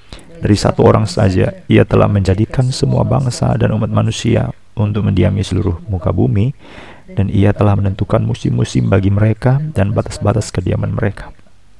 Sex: male